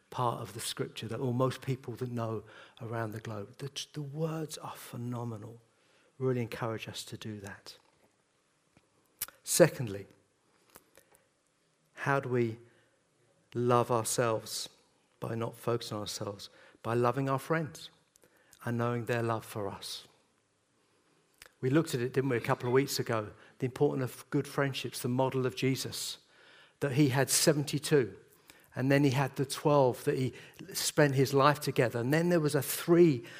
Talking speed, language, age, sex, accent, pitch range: 155 wpm, English, 50-69, male, British, 120-150 Hz